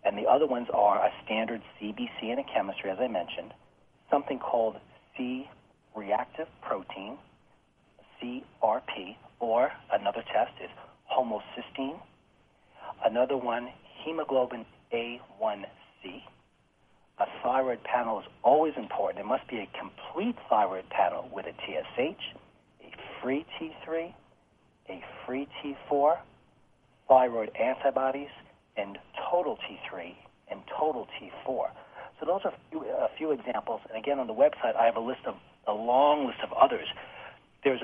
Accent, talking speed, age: American, 125 wpm, 40-59